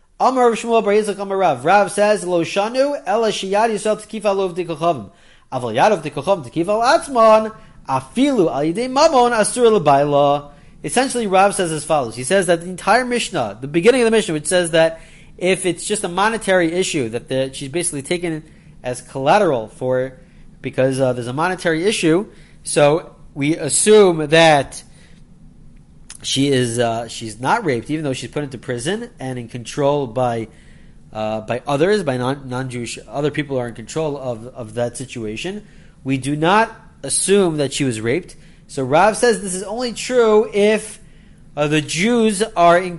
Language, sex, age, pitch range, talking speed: English, male, 30-49, 130-195 Hz, 135 wpm